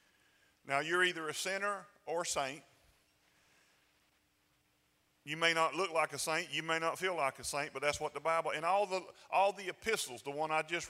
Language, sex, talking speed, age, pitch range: English, male, 205 wpm, 40-59, 140-175 Hz